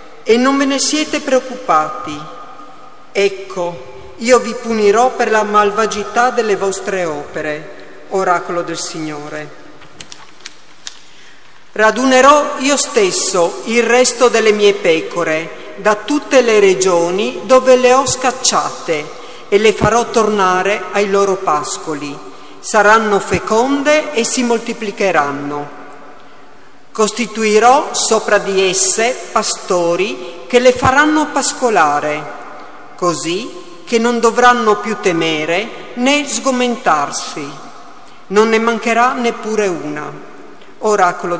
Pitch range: 170-245 Hz